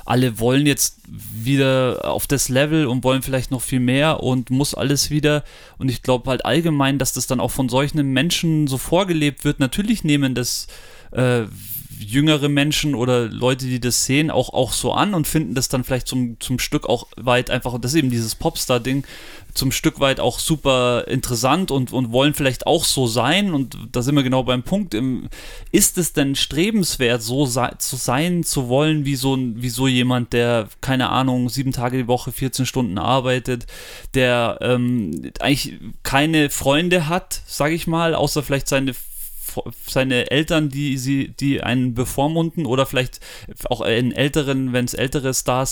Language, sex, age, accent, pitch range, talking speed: German, male, 30-49, German, 125-145 Hz, 180 wpm